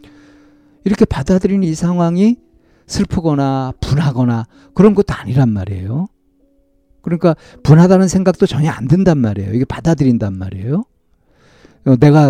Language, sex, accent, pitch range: Korean, male, native, 110-175 Hz